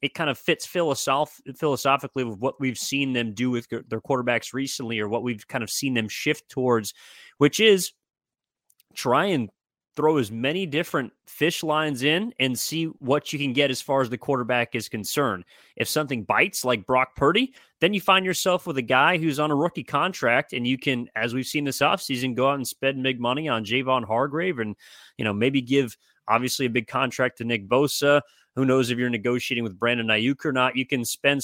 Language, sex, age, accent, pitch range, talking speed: English, male, 30-49, American, 120-140 Hz, 210 wpm